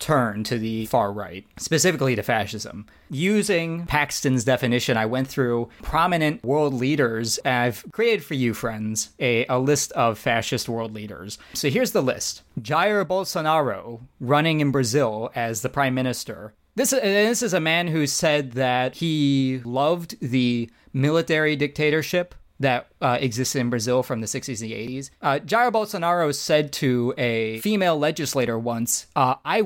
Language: English